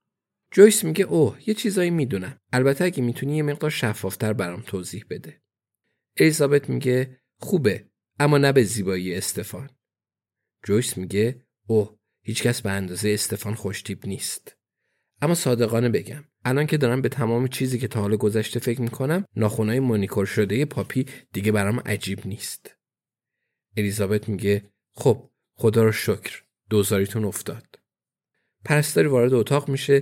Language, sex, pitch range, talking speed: Persian, male, 105-140 Hz, 135 wpm